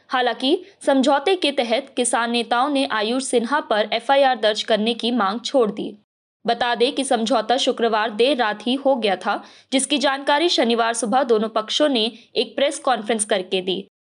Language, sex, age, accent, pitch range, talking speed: Hindi, female, 20-39, native, 225-275 Hz, 75 wpm